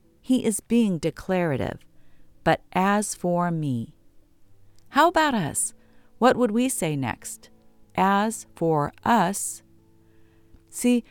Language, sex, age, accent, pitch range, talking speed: English, female, 50-69, American, 135-220 Hz, 110 wpm